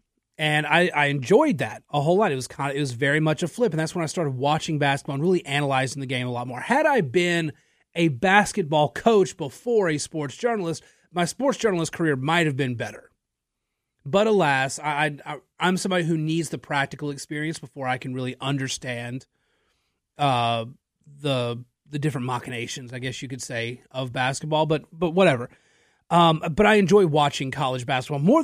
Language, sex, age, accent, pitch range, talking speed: English, male, 30-49, American, 135-180 Hz, 190 wpm